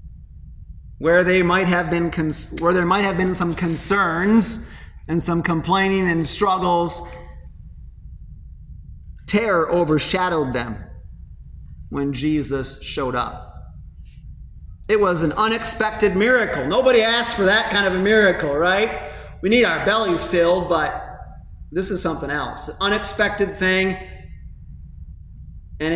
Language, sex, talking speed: English, male, 120 wpm